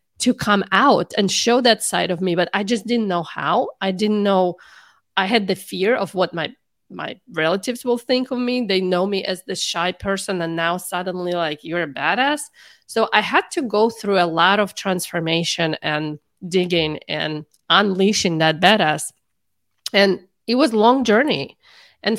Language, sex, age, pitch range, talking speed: English, female, 30-49, 170-210 Hz, 185 wpm